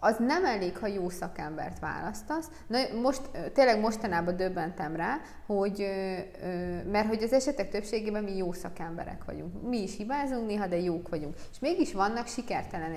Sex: female